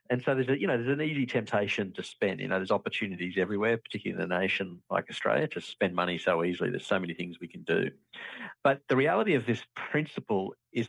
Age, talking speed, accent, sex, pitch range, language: 50-69, 230 wpm, Australian, male, 95-125 Hz, English